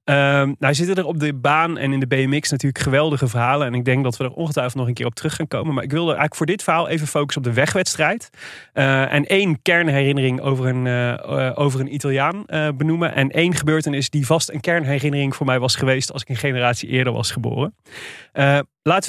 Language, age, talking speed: Dutch, 30-49, 235 wpm